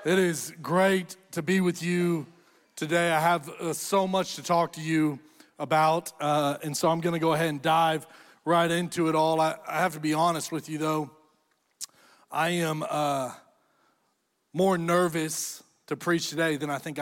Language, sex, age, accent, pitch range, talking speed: English, male, 40-59, American, 155-180 Hz, 180 wpm